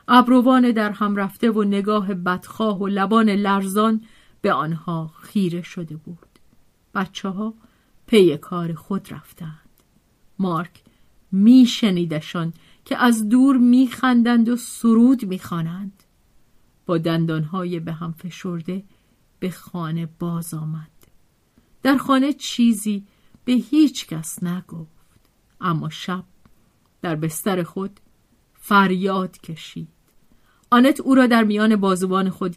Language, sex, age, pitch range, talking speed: Persian, female, 50-69, 170-220 Hz, 110 wpm